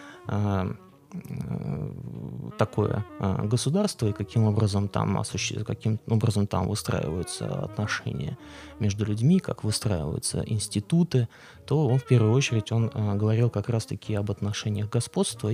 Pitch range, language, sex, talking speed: 105-120 Hz, Russian, male, 110 wpm